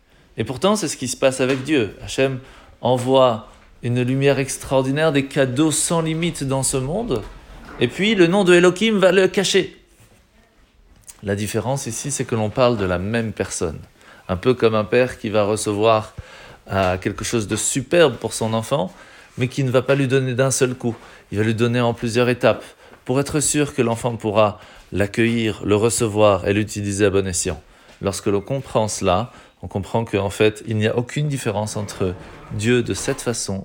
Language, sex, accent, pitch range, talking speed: French, male, French, 105-135 Hz, 185 wpm